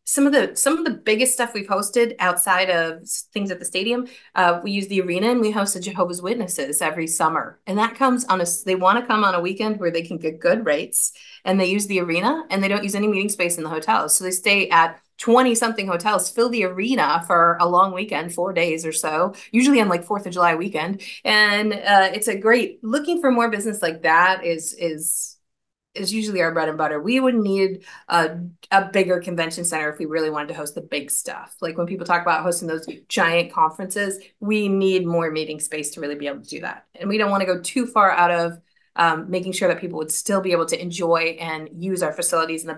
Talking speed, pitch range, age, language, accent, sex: 240 wpm, 170-215 Hz, 30-49, English, American, female